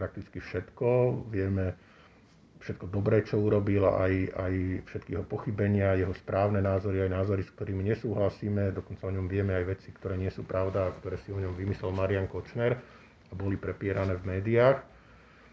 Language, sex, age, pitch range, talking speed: Slovak, male, 50-69, 100-115 Hz, 160 wpm